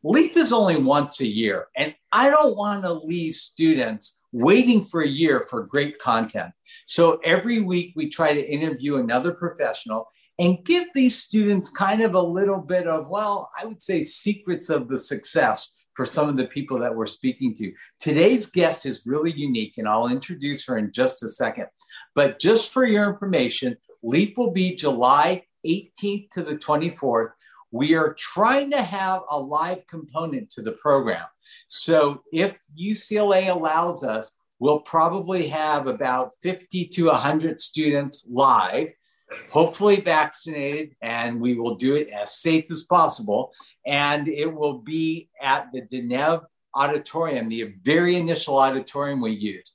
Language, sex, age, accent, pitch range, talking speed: English, male, 50-69, American, 140-195 Hz, 160 wpm